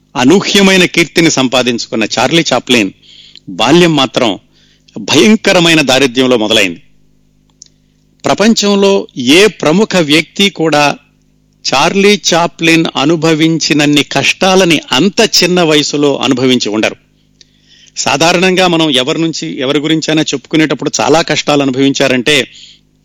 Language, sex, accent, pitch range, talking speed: Telugu, male, native, 130-170 Hz, 90 wpm